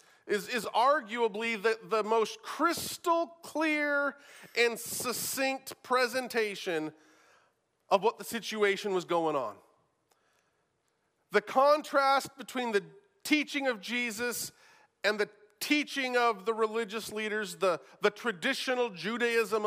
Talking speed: 110 wpm